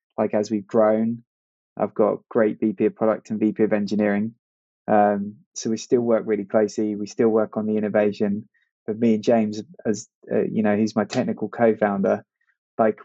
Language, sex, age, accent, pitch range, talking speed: English, male, 20-39, British, 105-115 Hz, 185 wpm